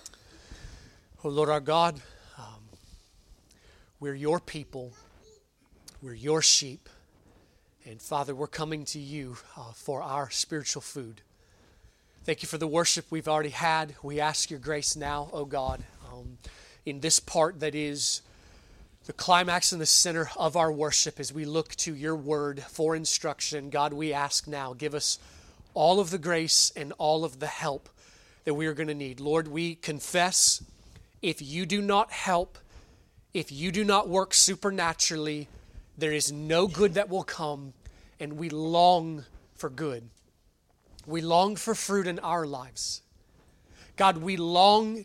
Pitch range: 140-180 Hz